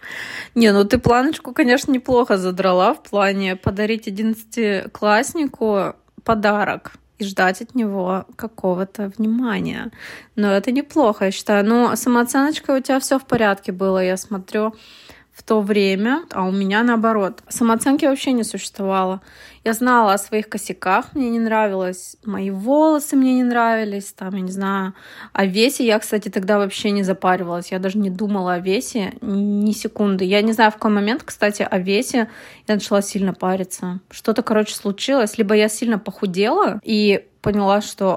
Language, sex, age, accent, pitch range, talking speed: Russian, female, 20-39, native, 195-230 Hz, 155 wpm